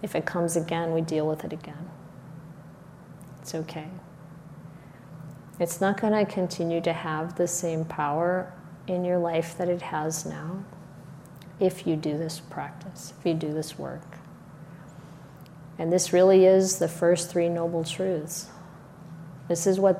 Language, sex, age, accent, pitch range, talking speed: English, female, 40-59, American, 155-175 Hz, 150 wpm